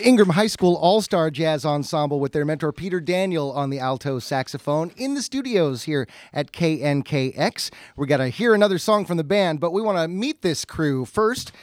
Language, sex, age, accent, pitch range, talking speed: English, male, 30-49, American, 125-170 Hz, 190 wpm